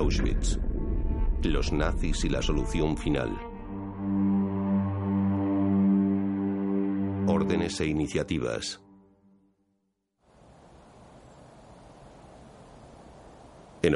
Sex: male